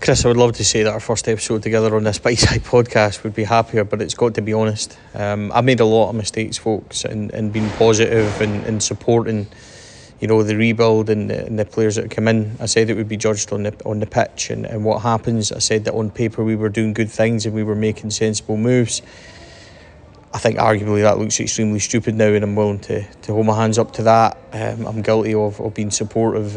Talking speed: 240 wpm